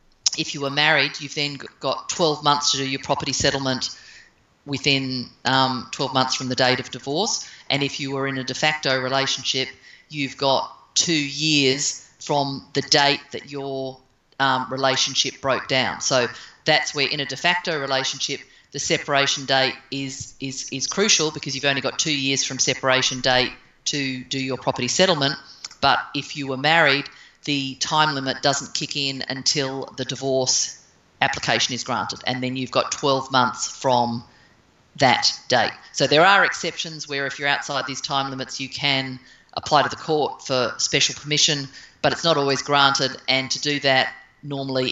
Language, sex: English, female